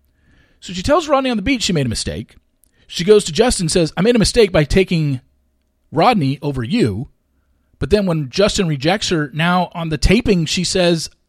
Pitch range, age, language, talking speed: 110-175 Hz, 40-59, English, 200 wpm